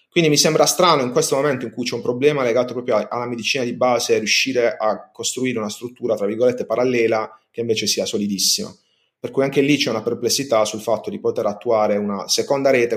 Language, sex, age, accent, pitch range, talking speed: Italian, male, 30-49, native, 105-130 Hz, 215 wpm